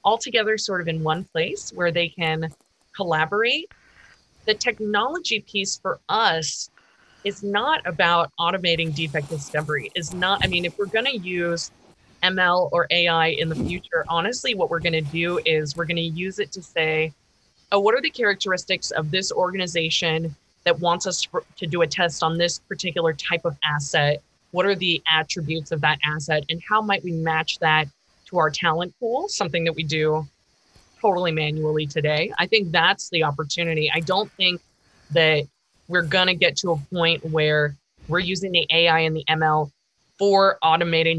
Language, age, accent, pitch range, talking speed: English, 20-39, American, 155-190 Hz, 175 wpm